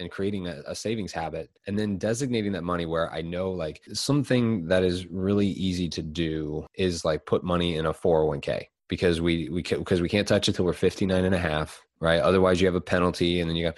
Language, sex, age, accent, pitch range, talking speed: English, male, 20-39, American, 80-95 Hz, 240 wpm